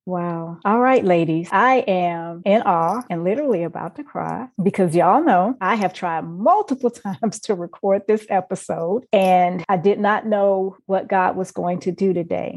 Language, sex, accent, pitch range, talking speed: English, female, American, 175-195 Hz, 175 wpm